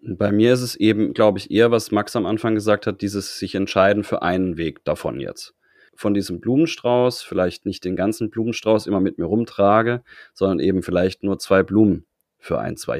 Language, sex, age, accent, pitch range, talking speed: German, male, 30-49, German, 95-110 Hz, 200 wpm